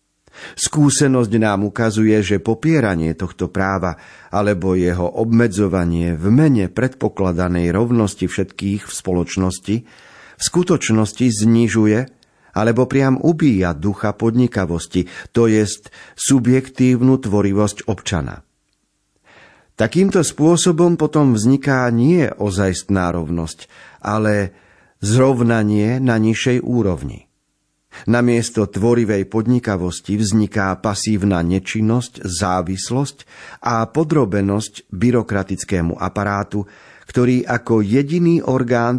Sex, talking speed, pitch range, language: male, 90 wpm, 100-125 Hz, Slovak